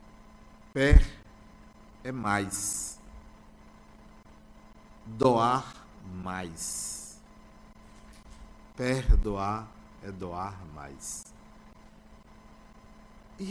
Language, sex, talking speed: Portuguese, male, 45 wpm